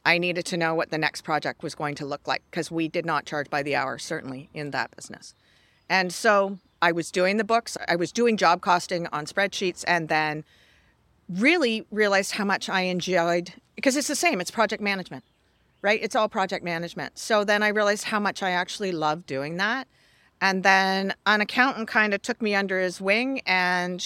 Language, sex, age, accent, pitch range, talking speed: English, female, 40-59, American, 155-205 Hz, 205 wpm